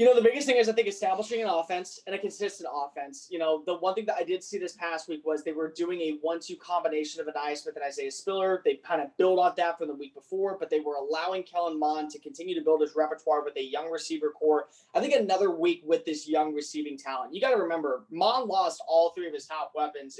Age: 20-39